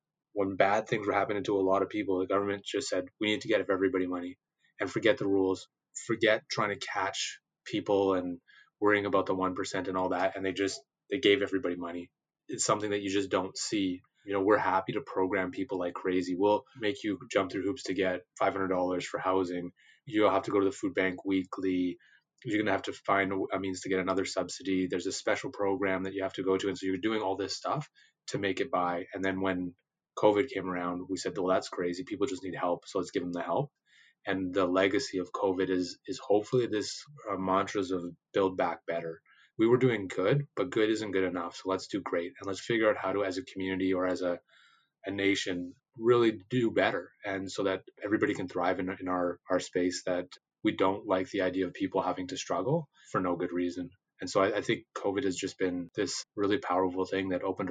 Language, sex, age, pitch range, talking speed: English, male, 20-39, 90-100 Hz, 230 wpm